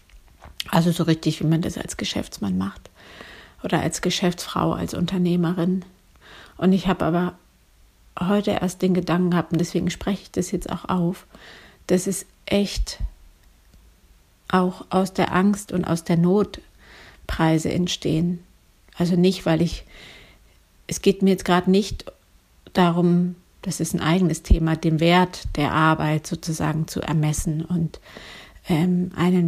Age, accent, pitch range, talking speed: 50-69, German, 160-180 Hz, 140 wpm